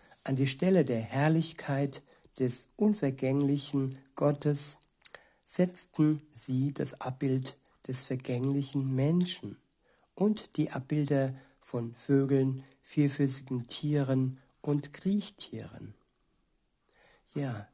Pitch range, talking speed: 130-150 Hz, 85 wpm